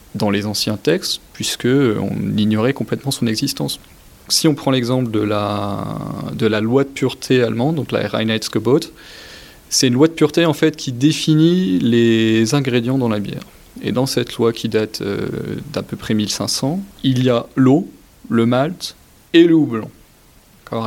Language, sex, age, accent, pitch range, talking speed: French, male, 20-39, French, 110-130 Hz, 170 wpm